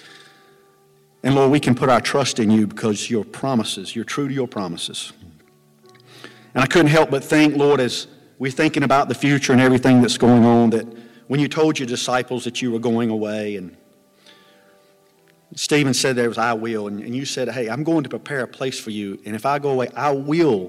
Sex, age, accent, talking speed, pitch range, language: male, 50-69, American, 210 wpm, 115-145 Hz, English